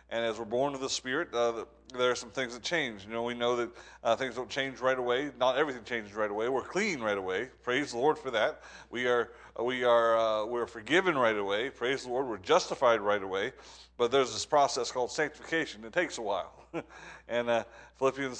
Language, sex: English, male